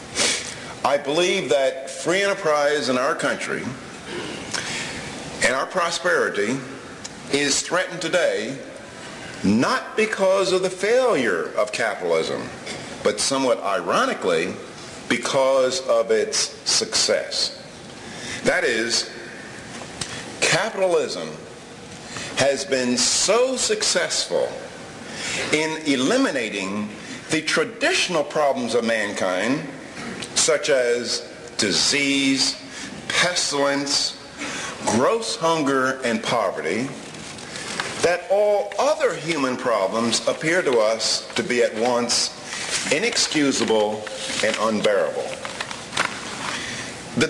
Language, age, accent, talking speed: English, 50-69, American, 85 wpm